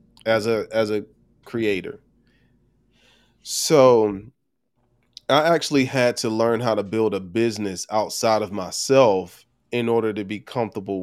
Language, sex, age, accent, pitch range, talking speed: English, male, 30-49, American, 105-135 Hz, 130 wpm